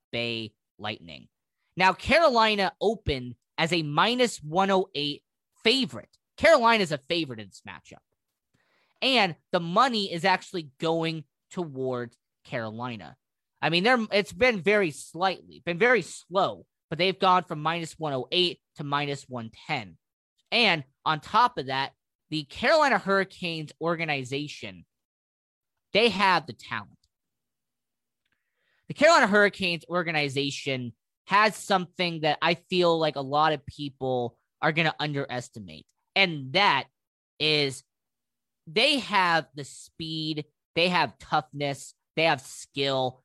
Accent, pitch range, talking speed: American, 135-185 Hz, 120 wpm